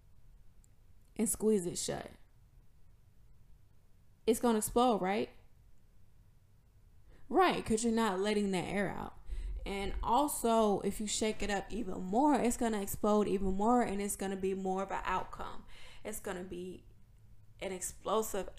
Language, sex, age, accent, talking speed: English, female, 20-39, American, 140 wpm